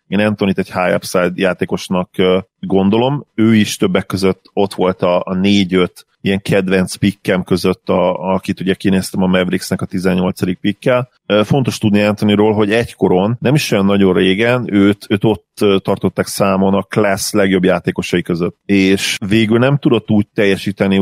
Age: 30-49